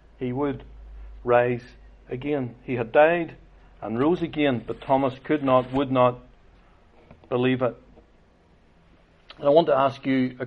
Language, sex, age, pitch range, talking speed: English, male, 60-79, 125-145 Hz, 140 wpm